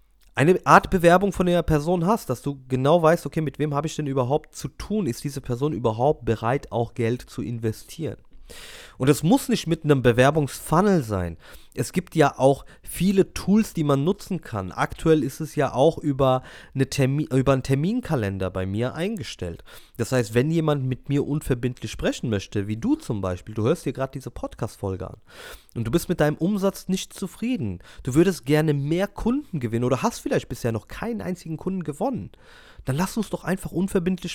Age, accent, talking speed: 30-49, German, 190 wpm